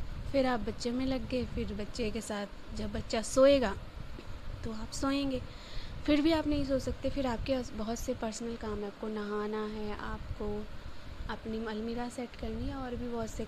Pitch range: 210-260 Hz